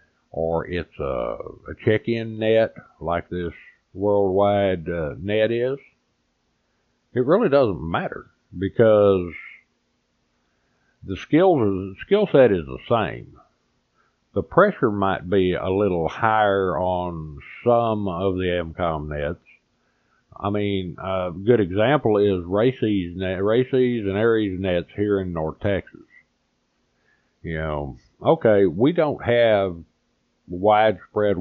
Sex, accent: male, American